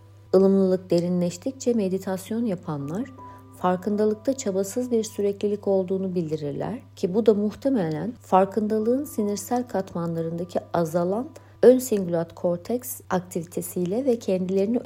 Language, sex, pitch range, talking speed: Turkish, female, 170-215 Hz, 95 wpm